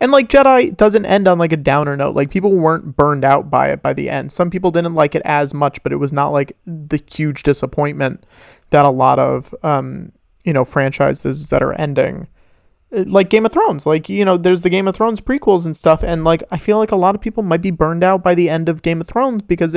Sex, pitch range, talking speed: male, 145-190 Hz, 250 wpm